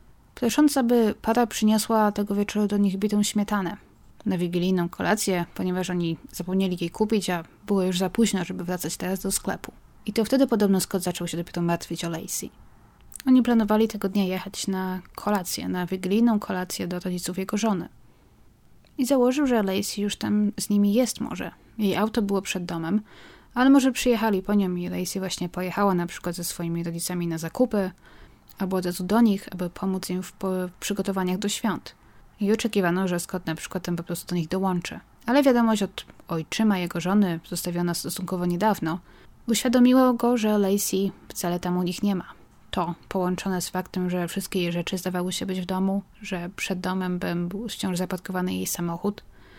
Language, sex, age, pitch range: Polish, female, 20-39, 180-210 Hz